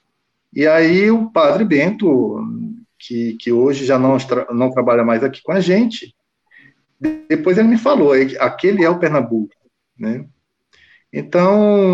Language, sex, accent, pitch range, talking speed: Portuguese, male, Brazilian, 140-195 Hz, 135 wpm